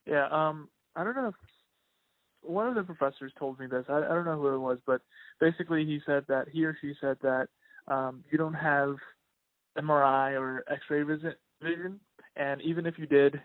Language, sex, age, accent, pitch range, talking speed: English, male, 20-39, American, 135-155 Hz, 190 wpm